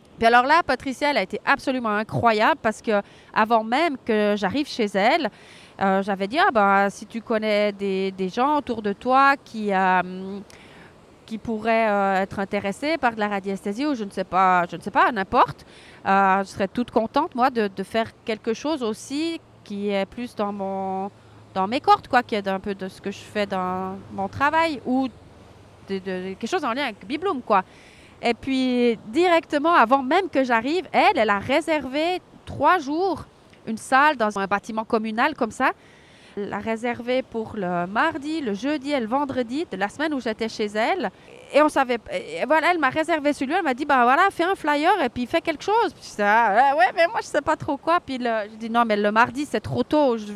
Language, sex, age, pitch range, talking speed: French, female, 30-49, 205-285 Hz, 215 wpm